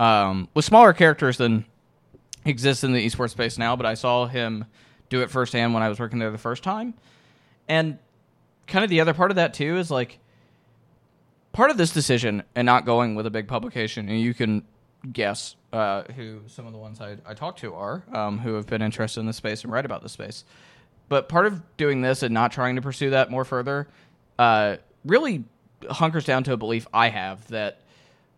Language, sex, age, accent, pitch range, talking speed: English, male, 20-39, American, 110-135 Hz, 210 wpm